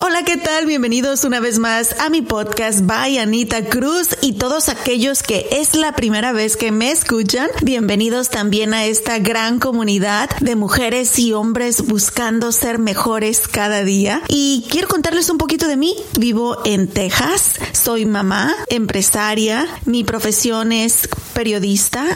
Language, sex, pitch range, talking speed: Spanish, female, 215-275 Hz, 150 wpm